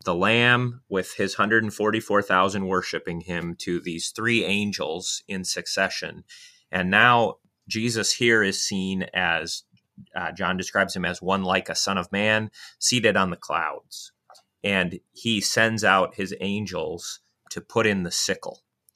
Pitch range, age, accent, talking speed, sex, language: 90-105 Hz, 30-49, American, 145 wpm, male, English